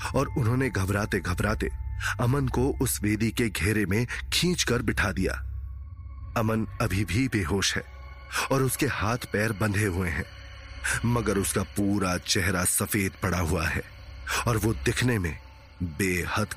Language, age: Hindi, 30-49